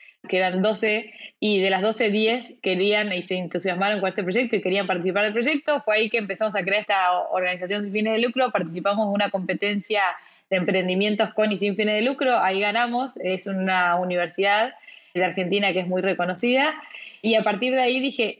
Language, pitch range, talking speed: Spanish, 195-235 Hz, 195 wpm